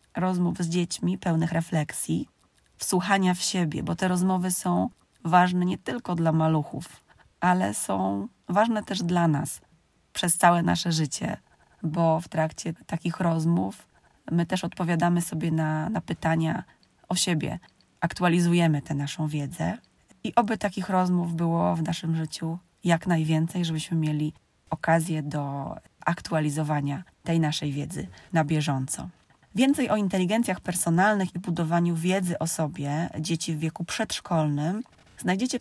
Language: Polish